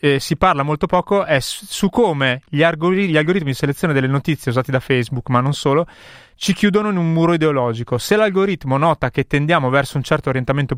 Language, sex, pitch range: Italian, male, 135-170 Hz